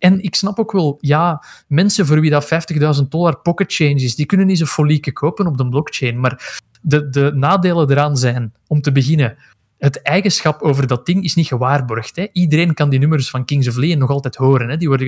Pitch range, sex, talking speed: 130-175 Hz, male, 220 wpm